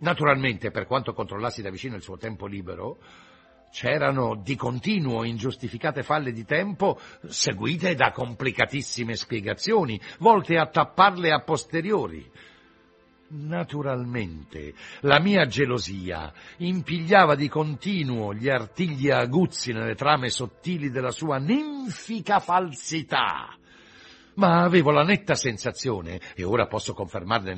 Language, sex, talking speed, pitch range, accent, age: Italian, male, 115 wpm, 105-165 Hz, native, 60-79